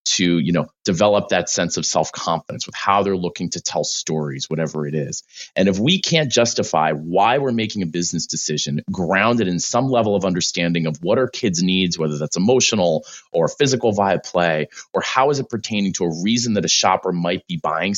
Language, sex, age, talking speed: English, male, 30-49, 205 wpm